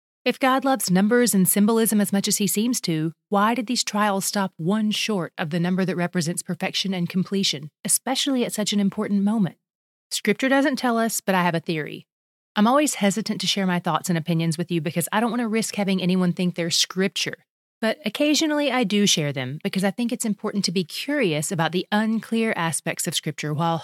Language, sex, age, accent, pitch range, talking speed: English, female, 30-49, American, 170-215 Hz, 215 wpm